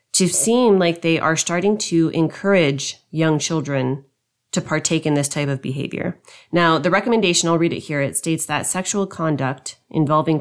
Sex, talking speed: female, 175 wpm